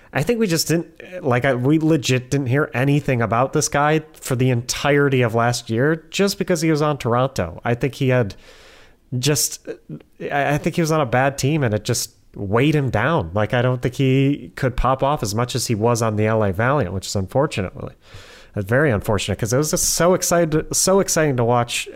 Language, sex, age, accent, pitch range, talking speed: English, male, 30-49, American, 110-135 Hz, 220 wpm